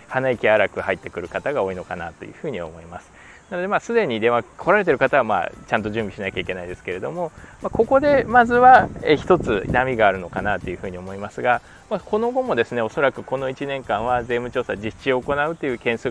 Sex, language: male, Japanese